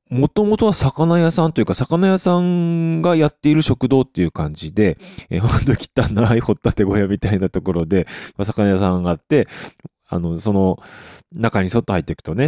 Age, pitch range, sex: 20-39, 85-125 Hz, male